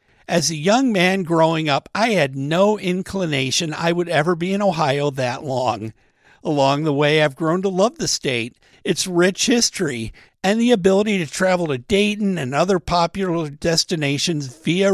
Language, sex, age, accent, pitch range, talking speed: English, male, 50-69, American, 140-195 Hz, 170 wpm